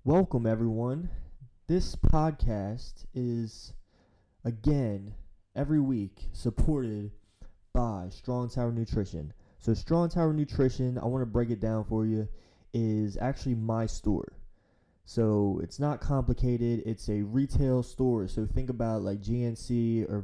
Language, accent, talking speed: English, American, 130 wpm